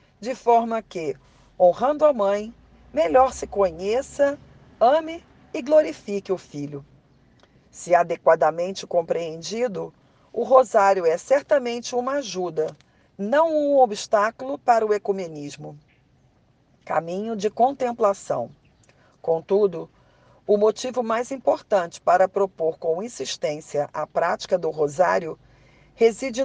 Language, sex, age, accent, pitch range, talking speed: Portuguese, female, 50-69, Brazilian, 175-245 Hz, 105 wpm